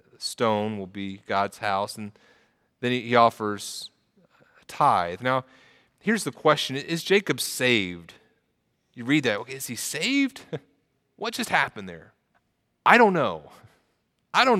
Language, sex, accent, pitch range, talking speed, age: English, male, American, 130-170 Hz, 140 wpm, 30-49